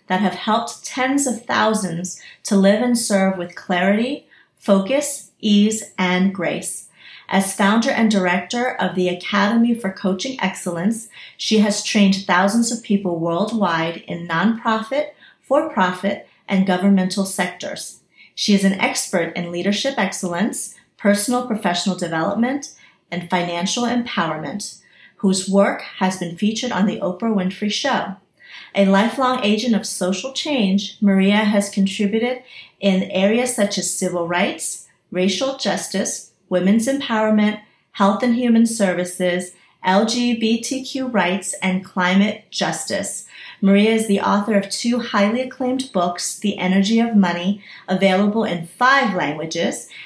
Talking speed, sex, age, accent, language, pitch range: 130 wpm, female, 40-59, American, English, 185-230 Hz